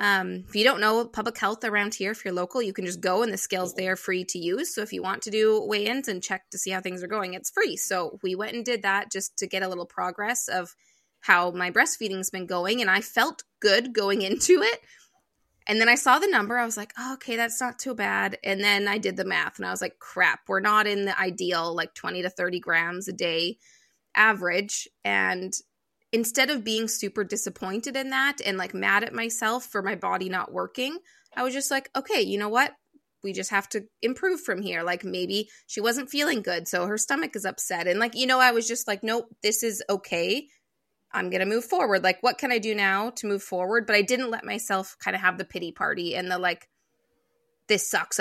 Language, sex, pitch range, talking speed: English, female, 185-235 Hz, 240 wpm